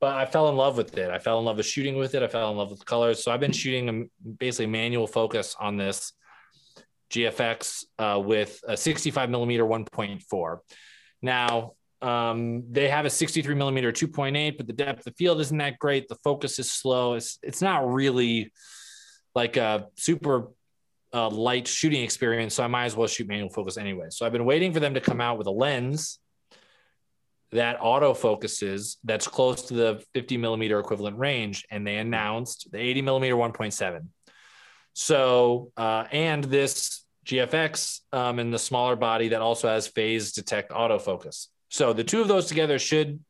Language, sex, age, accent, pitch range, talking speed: English, male, 20-39, American, 115-140 Hz, 180 wpm